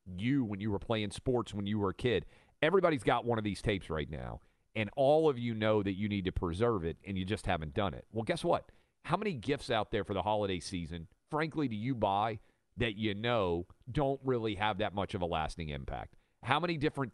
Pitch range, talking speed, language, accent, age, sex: 100-130 Hz, 235 wpm, English, American, 40-59, male